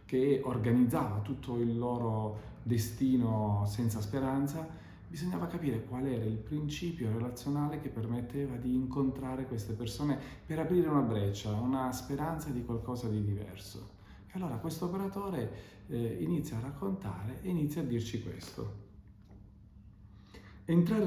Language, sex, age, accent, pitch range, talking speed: Italian, male, 40-59, native, 110-160 Hz, 125 wpm